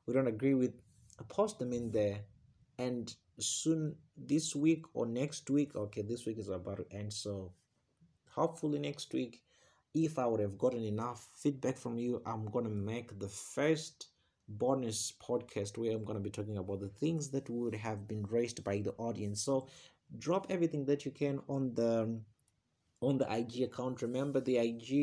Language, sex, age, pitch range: English, male, 30-49, 105-145 Hz